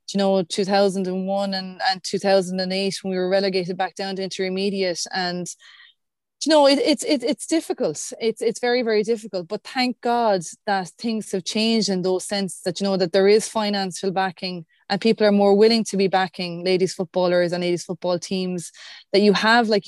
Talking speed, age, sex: 205 wpm, 20-39, female